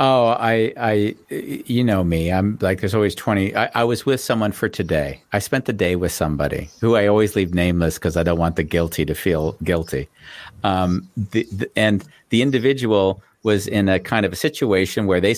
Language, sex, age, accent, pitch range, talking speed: English, male, 50-69, American, 95-120 Hz, 205 wpm